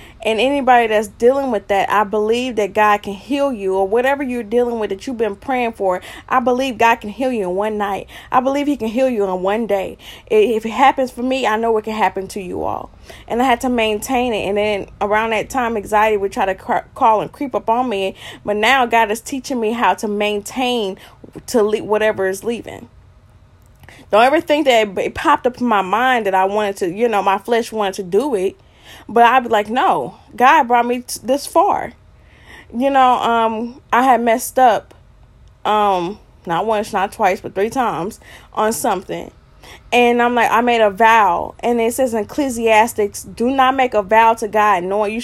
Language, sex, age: English, female, 20-39